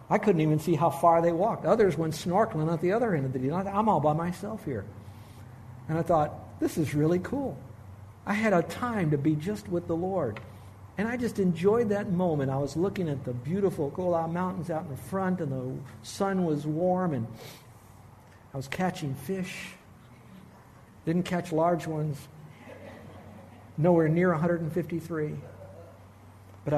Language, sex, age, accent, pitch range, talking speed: English, male, 60-79, American, 115-175 Hz, 170 wpm